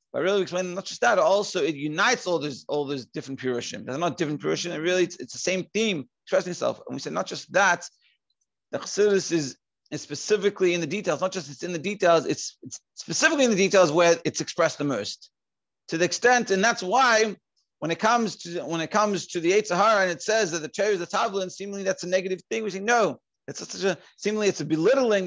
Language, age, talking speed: English, 40-59, 235 wpm